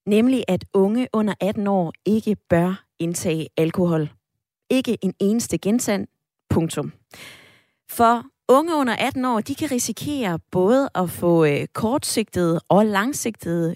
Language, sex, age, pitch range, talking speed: Danish, female, 20-39, 170-220 Hz, 120 wpm